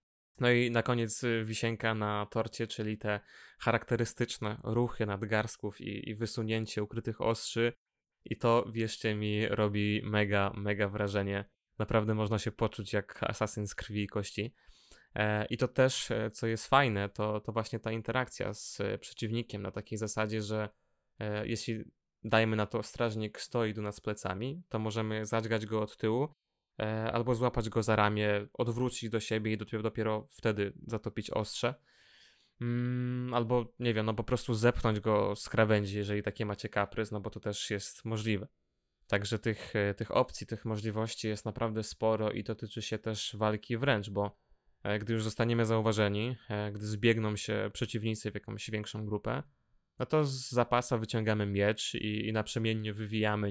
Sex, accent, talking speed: male, native, 155 wpm